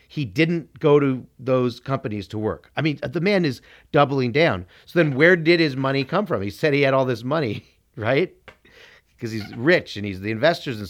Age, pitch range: 40-59, 115-150 Hz